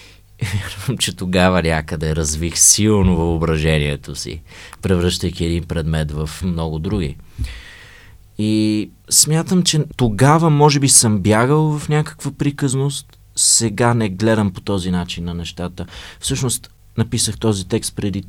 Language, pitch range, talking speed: Bulgarian, 90-110 Hz, 125 wpm